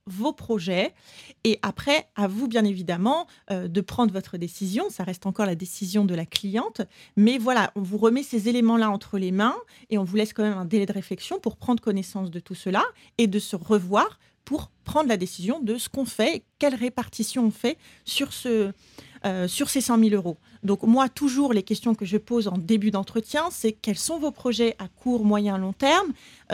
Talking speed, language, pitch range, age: 215 wpm, French, 195-240 Hz, 30-49